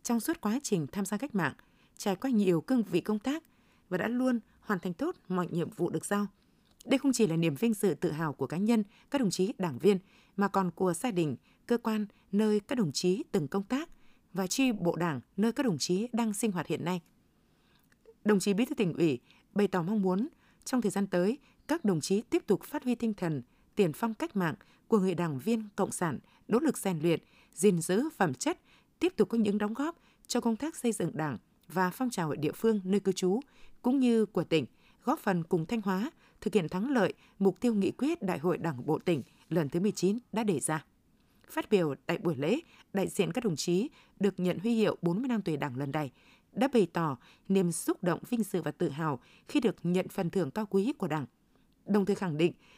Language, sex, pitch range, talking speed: Vietnamese, female, 175-235 Hz, 230 wpm